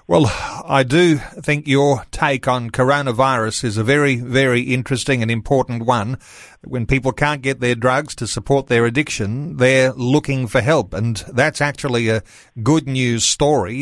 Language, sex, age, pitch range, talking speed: English, male, 40-59, 120-145 Hz, 160 wpm